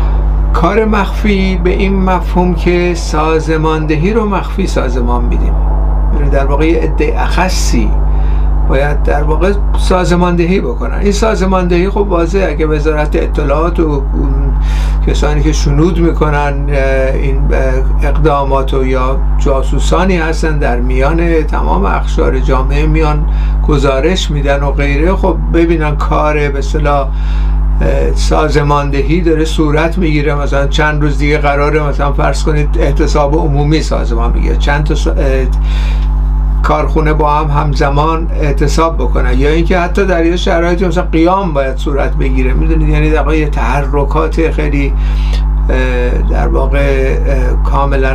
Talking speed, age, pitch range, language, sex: 120 wpm, 60-79, 135-170 Hz, Persian, male